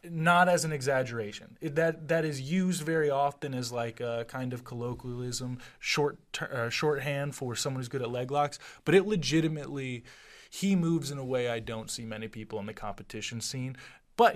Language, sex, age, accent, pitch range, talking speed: English, male, 20-39, American, 120-155 Hz, 190 wpm